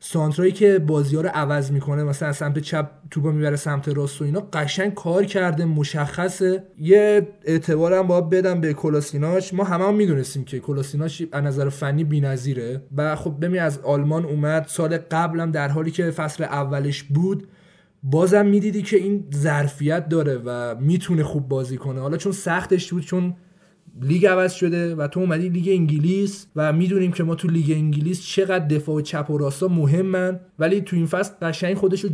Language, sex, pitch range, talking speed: Persian, male, 145-185 Hz, 180 wpm